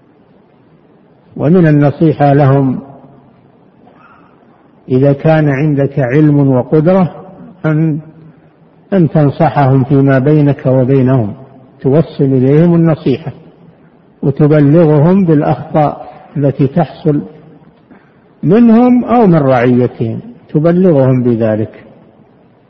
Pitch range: 140-170 Hz